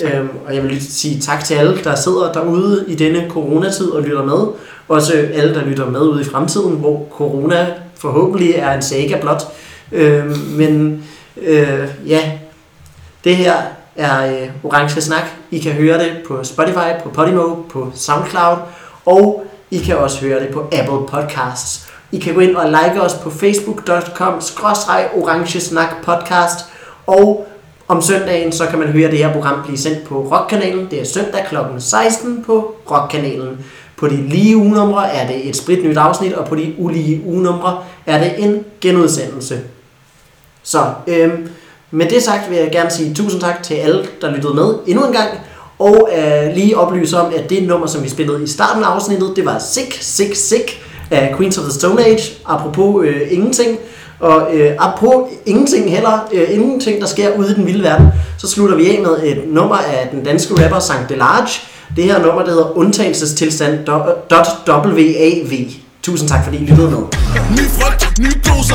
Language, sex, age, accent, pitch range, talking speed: Danish, male, 30-49, native, 150-185 Hz, 175 wpm